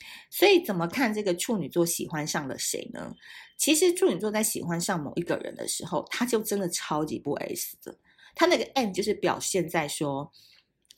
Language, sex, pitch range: Chinese, female, 170-265 Hz